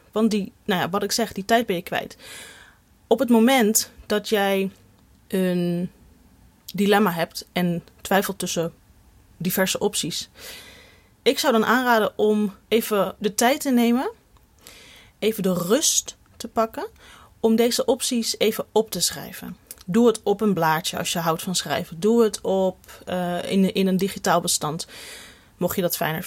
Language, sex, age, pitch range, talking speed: Dutch, female, 30-49, 190-245 Hz, 150 wpm